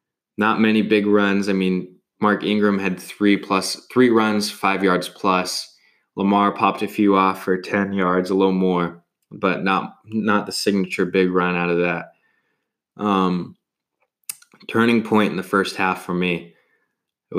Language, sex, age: English, male, 20-39